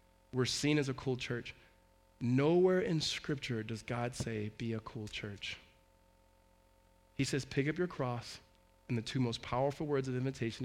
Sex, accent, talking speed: male, American, 170 wpm